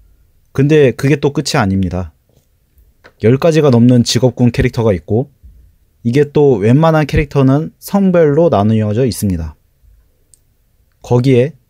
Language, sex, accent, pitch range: Korean, male, native, 95-140 Hz